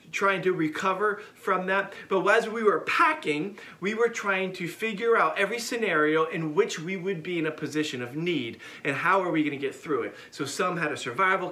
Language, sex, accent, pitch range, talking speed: English, male, American, 155-215 Hz, 220 wpm